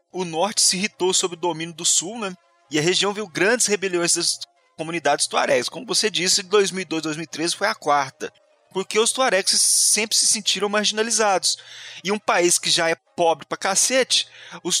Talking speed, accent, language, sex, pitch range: 185 wpm, Brazilian, Portuguese, male, 150-205 Hz